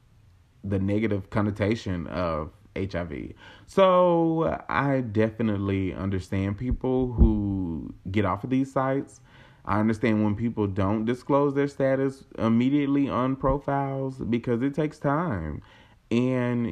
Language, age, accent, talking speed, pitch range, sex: English, 30-49, American, 115 wpm, 100-125 Hz, male